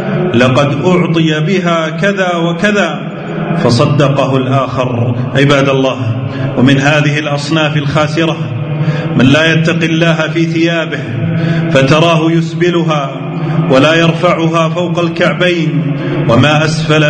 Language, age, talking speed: Arabic, 40-59, 95 wpm